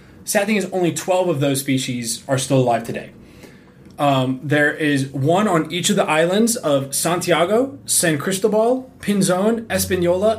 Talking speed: 155 wpm